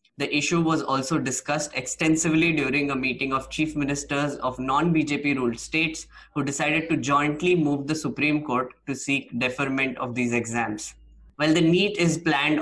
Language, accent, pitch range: English, Indian, 130-160 Hz